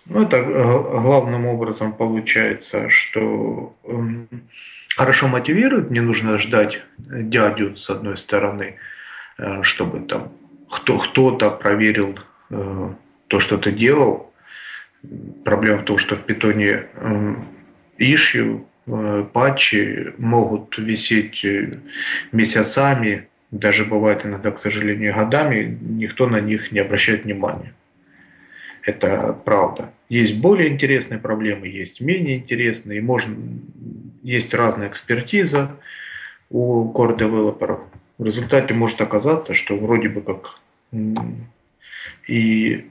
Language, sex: Russian, male